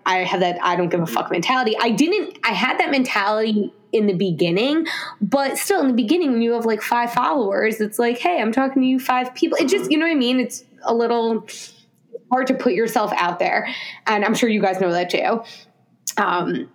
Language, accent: English, American